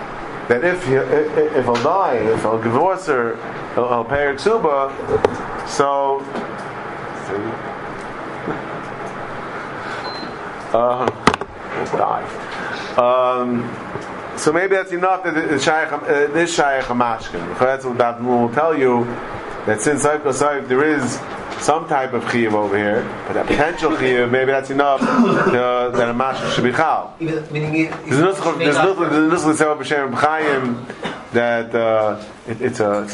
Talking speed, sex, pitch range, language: 155 wpm, male, 120-155 Hz, English